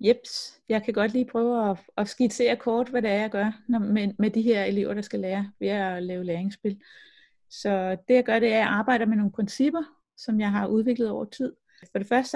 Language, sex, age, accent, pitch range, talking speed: Danish, female, 30-49, native, 200-245 Hz, 225 wpm